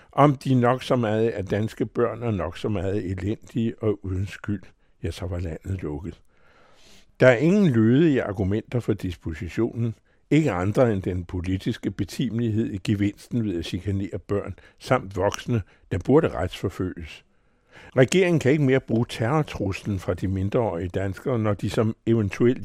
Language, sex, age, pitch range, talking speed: Danish, male, 60-79, 100-125 Hz, 160 wpm